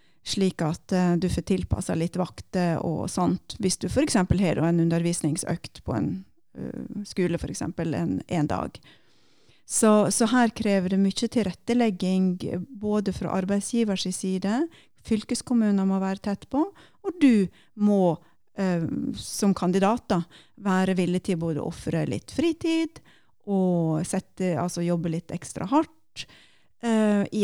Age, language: 30-49, English